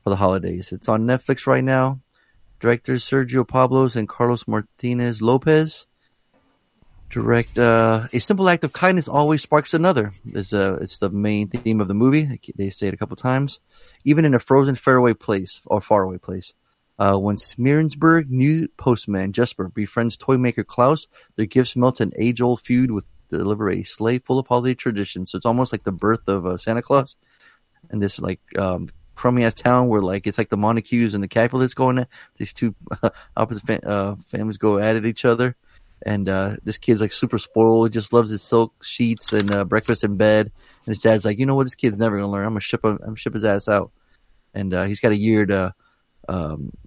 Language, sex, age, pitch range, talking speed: English, male, 30-49, 100-125 Hz, 210 wpm